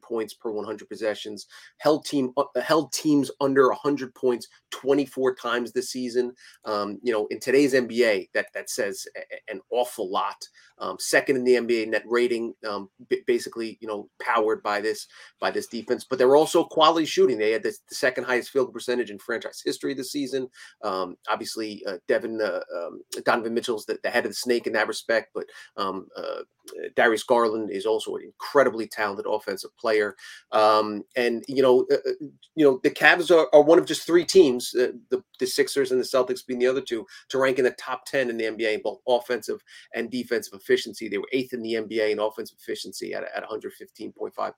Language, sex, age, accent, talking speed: English, male, 30-49, American, 200 wpm